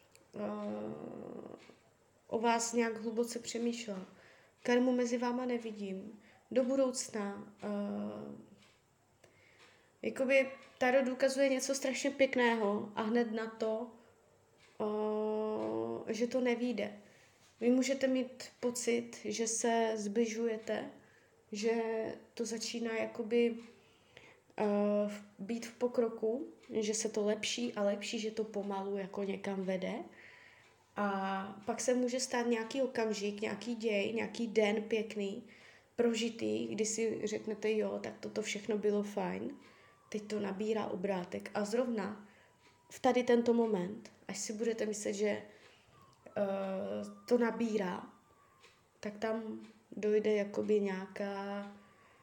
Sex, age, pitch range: female, 20-39, 205-235 Hz